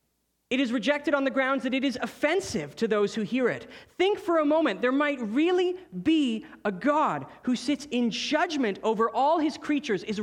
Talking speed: 200 wpm